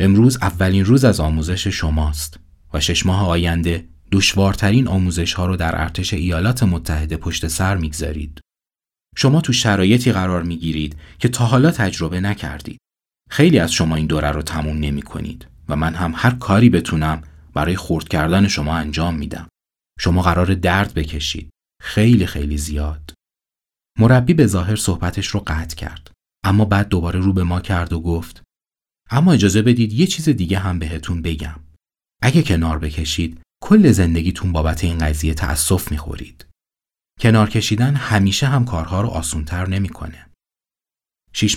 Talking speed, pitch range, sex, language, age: 145 wpm, 80-100 Hz, male, Persian, 30-49